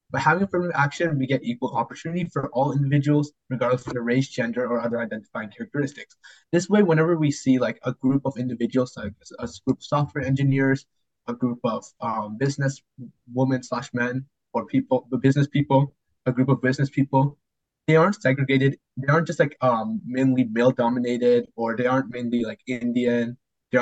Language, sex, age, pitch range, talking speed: English, male, 20-39, 125-150 Hz, 180 wpm